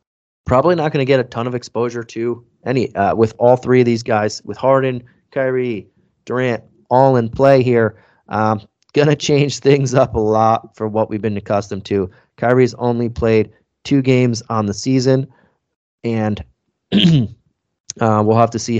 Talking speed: 170 wpm